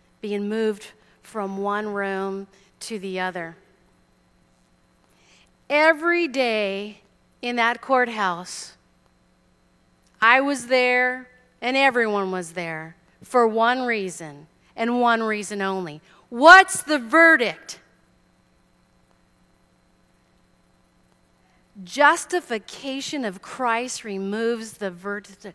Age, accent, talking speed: 40-59, American, 85 wpm